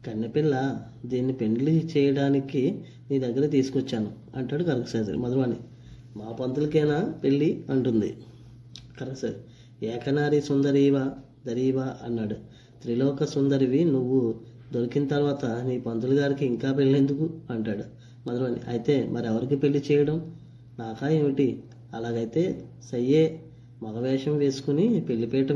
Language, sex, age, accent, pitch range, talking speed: Telugu, female, 20-39, native, 120-140 Hz, 100 wpm